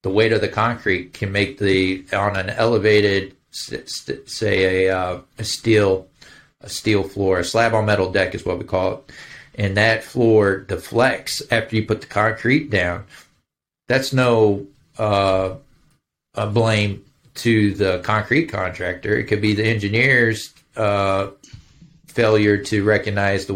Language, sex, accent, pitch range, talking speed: English, male, American, 100-115 Hz, 150 wpm